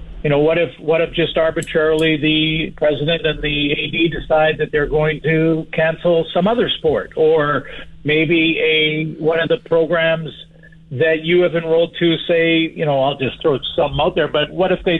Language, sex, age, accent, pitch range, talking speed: English, male, 50-69, American, 130-165 Hz, 190 wpm